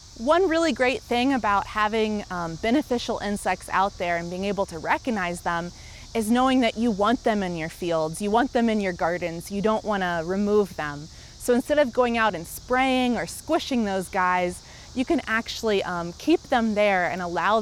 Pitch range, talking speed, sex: 180-240 Hz, 200 wpm, female